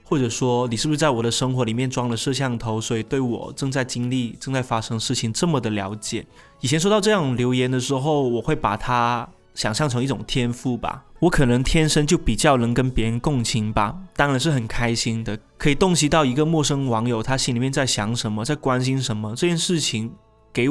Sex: male